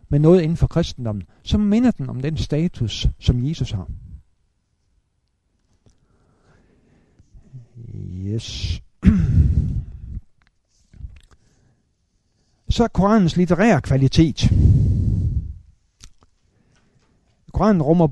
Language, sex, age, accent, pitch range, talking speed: Danish, male, 60-79, native, 100-155 Hz, 70 wpm